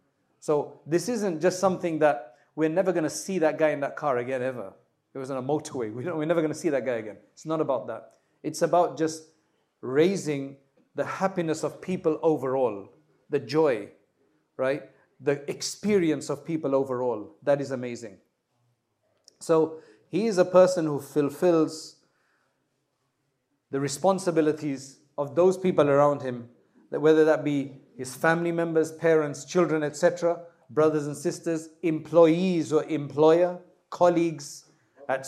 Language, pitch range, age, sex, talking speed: English, 140-170 Hz, 40-59, male, 145 wpm